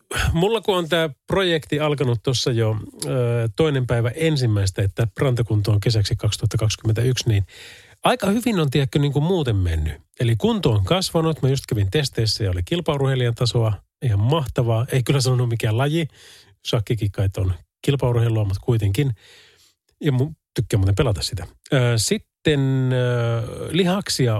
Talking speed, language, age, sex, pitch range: 145 wpm, Finnish, 30-49, male, 110-150 Hz